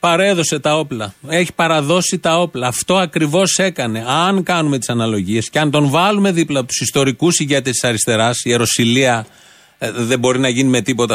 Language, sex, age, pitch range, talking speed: Greek, male, 30-49, 135-180 Hz, 170 wpm